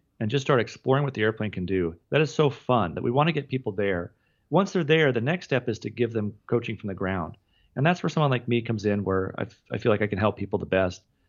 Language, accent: English, American